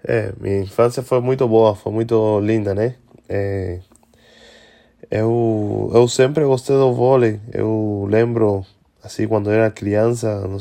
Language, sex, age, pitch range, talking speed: Portuguese, male, 20-39, 100-110 Hz, 130 wpm